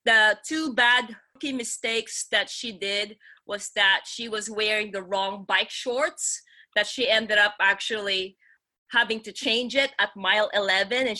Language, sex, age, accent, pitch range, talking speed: English, female, 20-39, Filipino, 200-240 Hz, 160 wpm